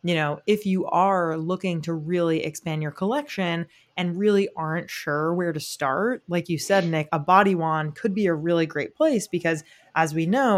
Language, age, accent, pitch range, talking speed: English, 20-39, American, 155-190 Hz, 200 wpm